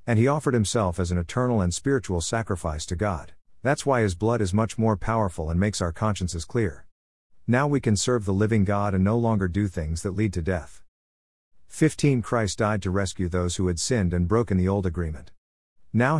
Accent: American